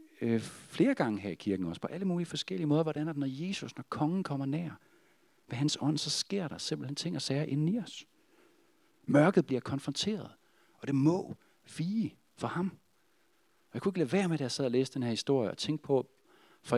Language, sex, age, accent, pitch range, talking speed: Danish, male, 40-59, native, 105-155 Hz, 220 wpm